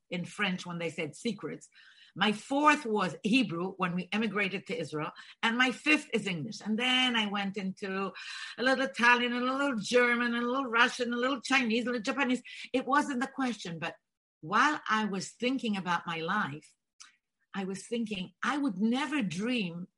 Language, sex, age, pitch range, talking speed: English, female, 50-69, 195-255 Hz, 185 wpm